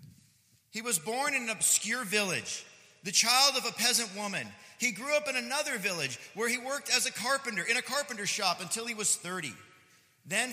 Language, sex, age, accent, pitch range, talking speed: English, male, 40-59, American, 155-225 Hz, 195 wpm